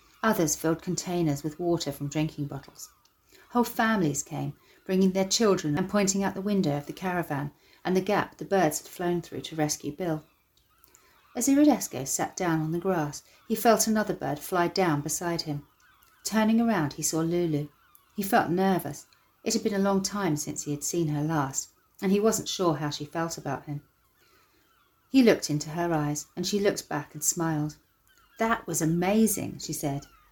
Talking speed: 185 wpm